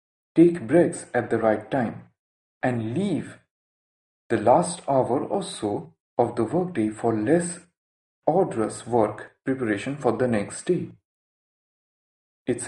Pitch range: 110-170 Hz